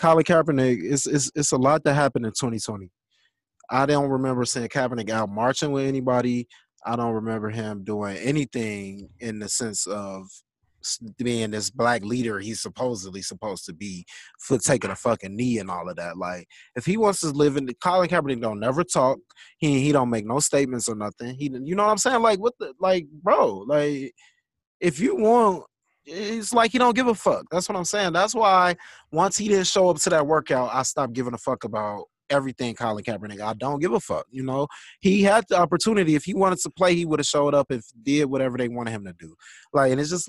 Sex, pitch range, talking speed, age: male, 110-175 Hz, 220 wpm, 20-39